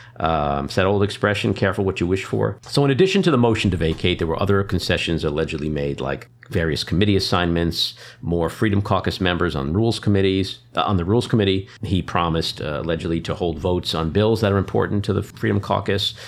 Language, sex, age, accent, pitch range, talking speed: English, male, 50-69, American, 90-115 Hz, 200 wpm